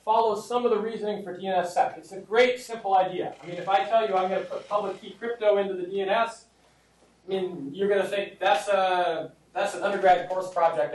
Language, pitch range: English, 185-230 Hz